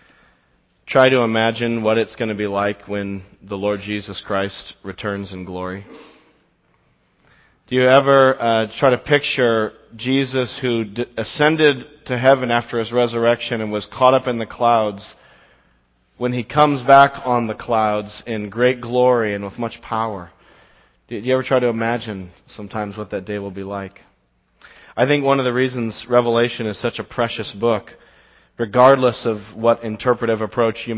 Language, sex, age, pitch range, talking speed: English, male, 40-59, 105-130 Hz, 165 wpm